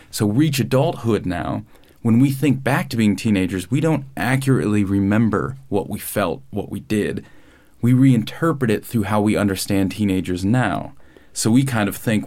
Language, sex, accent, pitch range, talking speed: English, male, American, 100-125 Hz, 170 wpm